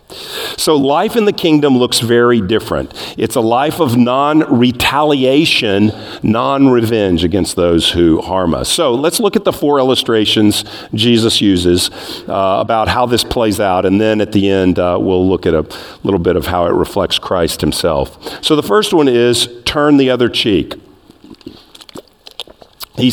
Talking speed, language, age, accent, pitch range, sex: 160 wpm, English, 50-69, American, 100-140 Hz, male